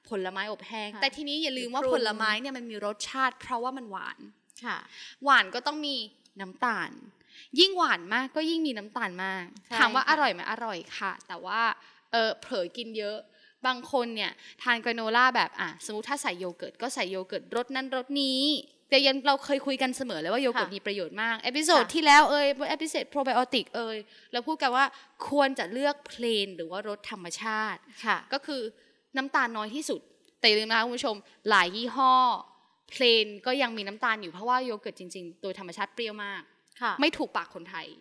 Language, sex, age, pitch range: Thai, female, 20-39, 210-280 Hz